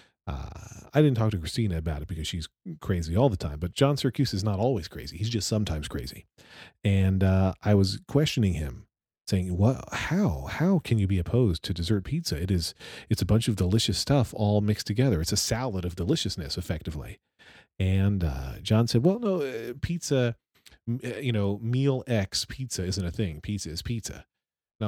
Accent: American